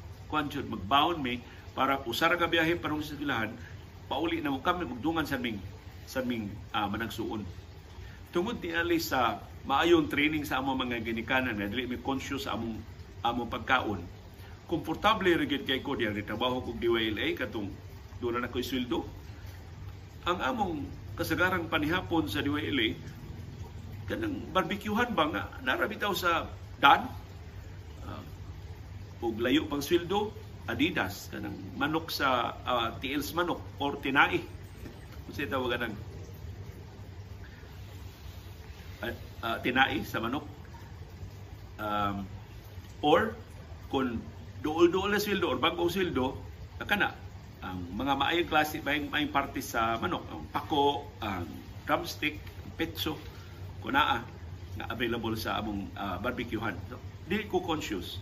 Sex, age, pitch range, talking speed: male, 50-69, 95-130 Hz, 120 wpm